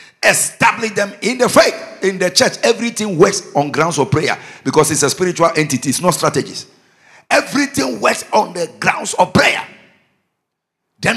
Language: English